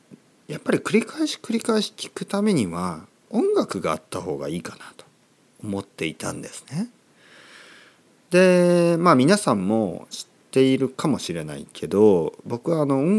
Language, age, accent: Japanese, 40-59, native